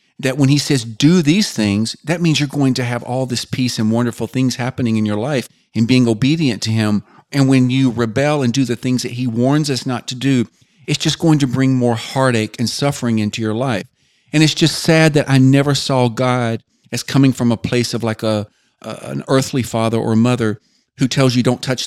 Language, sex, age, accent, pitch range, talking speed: English, male, 40-59, American, 115-135 Hz, 230 wpm